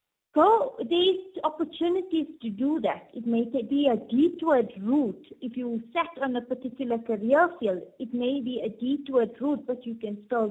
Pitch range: 225-305 Hz